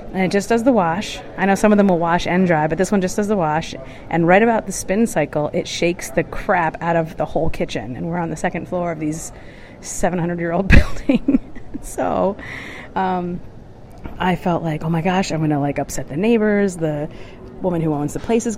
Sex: female